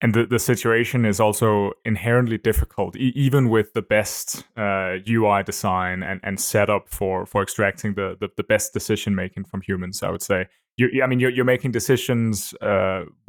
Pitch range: 105-125 Hz